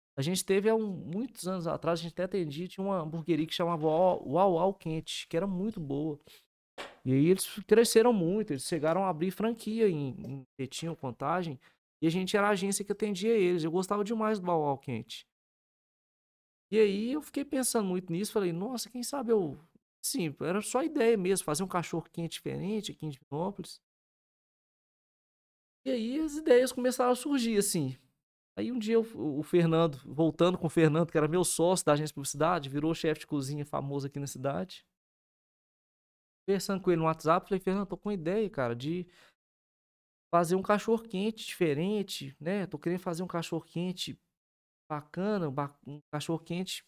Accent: Brazilian